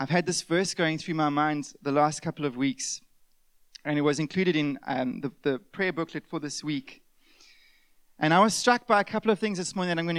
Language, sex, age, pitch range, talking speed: English, male, 30-49, 170-230 Hz, 235 wpm